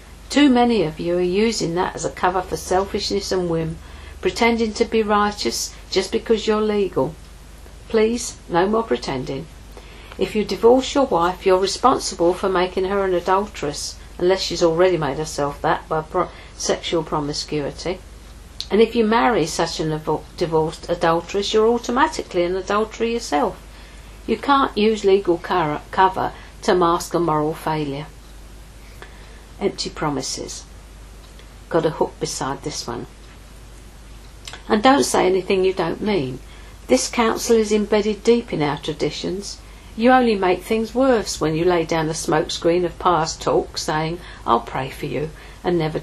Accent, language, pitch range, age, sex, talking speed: British, English, 155-210 Hz, 50-69, female, 150 wpm